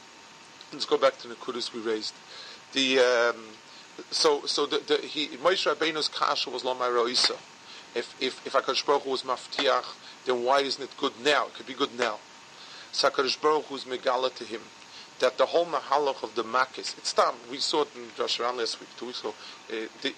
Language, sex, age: English, male, 40-59